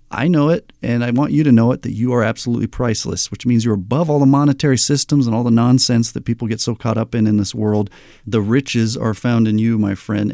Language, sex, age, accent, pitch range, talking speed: English, male, 40-59, American, 105-135 Hz, 260 wpm